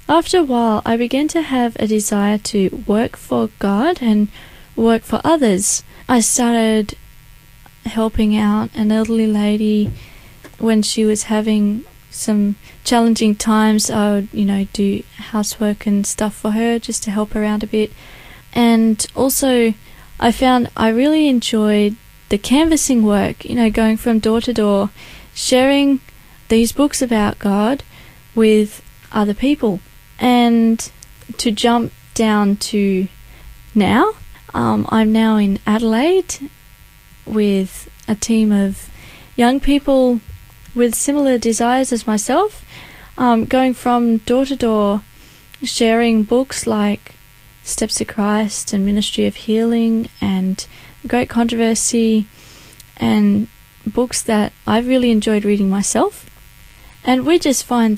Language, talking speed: English, 130 wpm